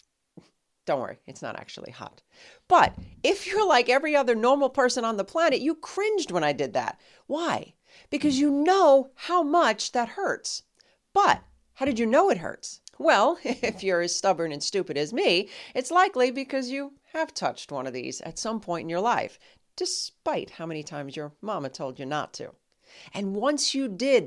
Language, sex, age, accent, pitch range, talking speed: English, female, 40-59, American, 180-285 Hz, 190 wpm